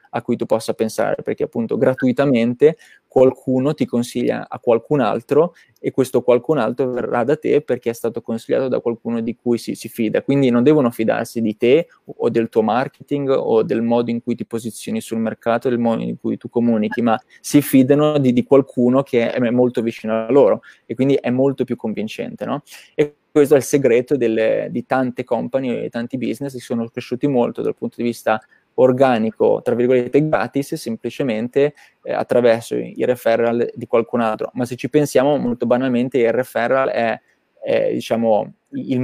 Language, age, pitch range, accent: Italian, 20-39, 115-135 Hz, native